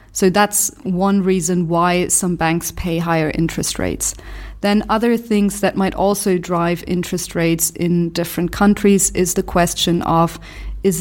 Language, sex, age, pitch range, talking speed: English, female, 30-49, 175-195 Hz, 155 wpm